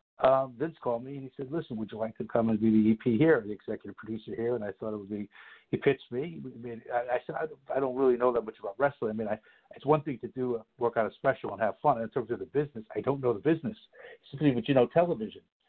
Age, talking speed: 60-79, 305 wpm